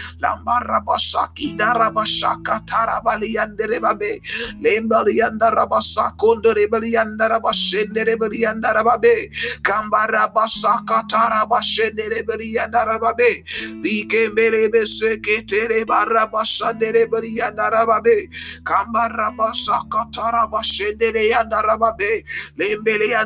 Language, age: Finnish, 30-49